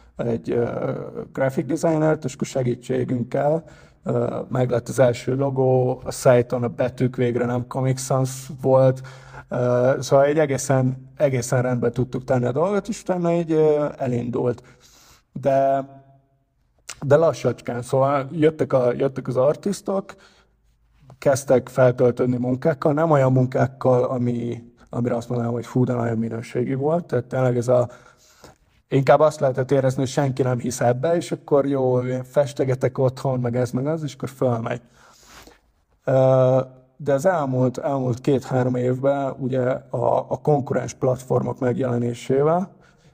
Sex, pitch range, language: male, 125-140 Hz, Hungarian